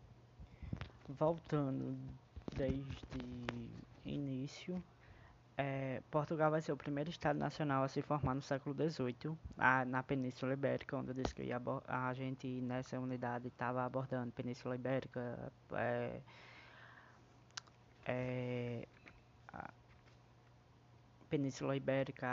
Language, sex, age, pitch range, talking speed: Portuguese, female, 20-39, 125-150 Hz, 85 wpm